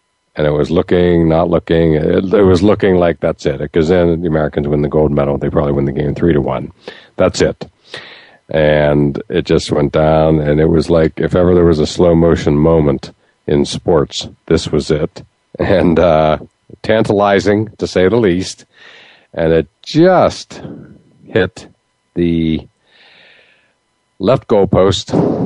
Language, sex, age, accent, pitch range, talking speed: English, male, 50-69, American, 75-85 Hz, 160 wpm